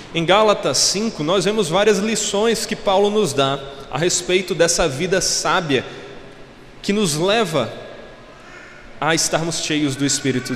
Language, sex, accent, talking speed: Portuguese, male, Brazilian, 135 wpm